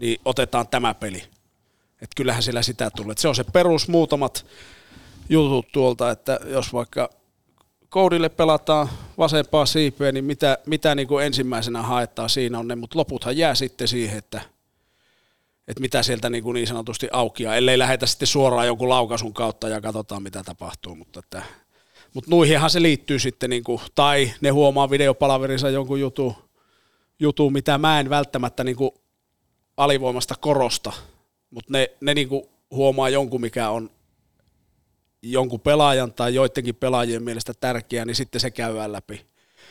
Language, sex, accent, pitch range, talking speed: Finnish, male, native, 115-145 Hz, 155 wpm